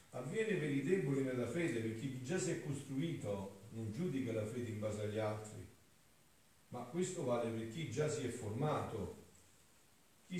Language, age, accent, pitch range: Italian, 50-69, native, 115-150 Hz